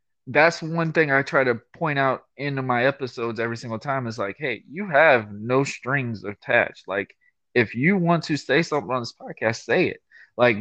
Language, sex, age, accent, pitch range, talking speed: English, male, 20-39, American, 120-145 Hz, 200 wpm